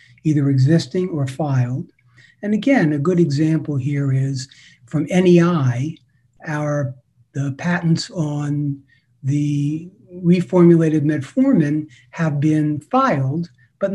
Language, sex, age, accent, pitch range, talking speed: English, male, 60-79, American, 135-160 Hz, 105 wpm